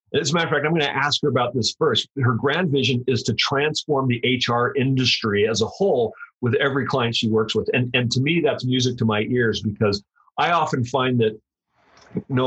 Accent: American